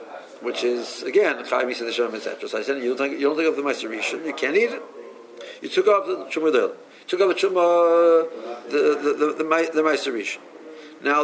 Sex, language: male, English